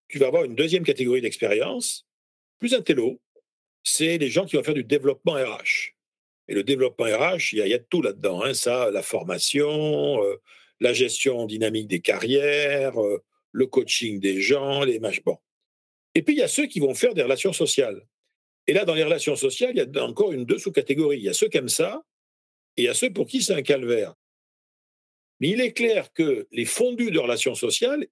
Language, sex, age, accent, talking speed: French, male, 50-69, French, 215 wpm